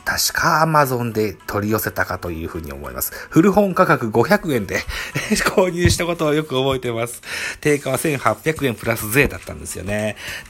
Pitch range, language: 95-130 Hz, Japanese